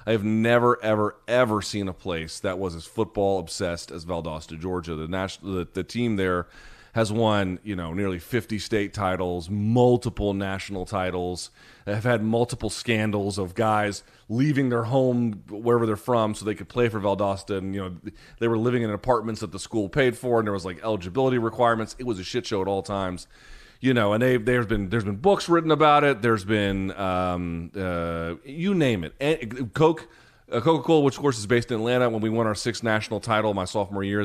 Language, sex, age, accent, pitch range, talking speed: English, male, 30-49, American, 95-125 Hz, 200 wpm